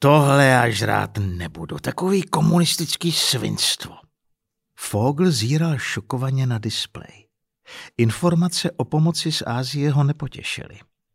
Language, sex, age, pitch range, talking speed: Czech, male, 50-69, 115-170 Hz, 100 wpm